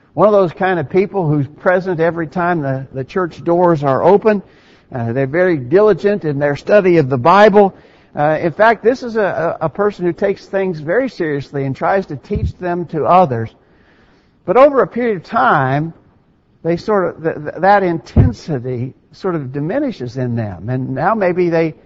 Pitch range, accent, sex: 140-190 Hz, American, male